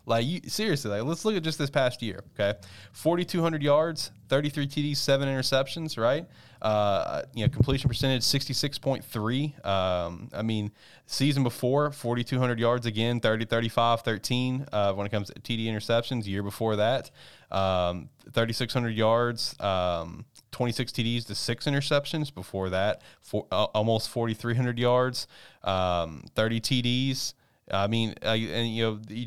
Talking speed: 145 wpm